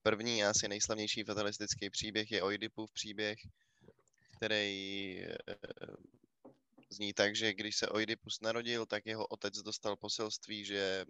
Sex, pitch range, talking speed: male, 105-120 Hz, 130 wpm